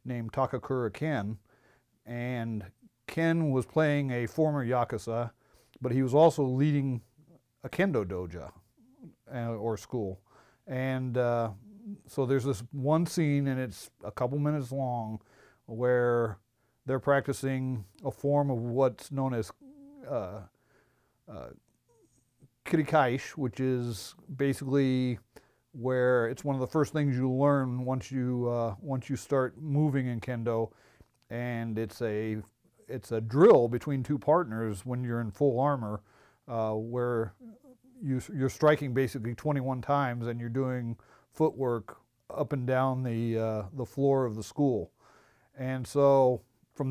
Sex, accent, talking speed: male, American, 135 wpm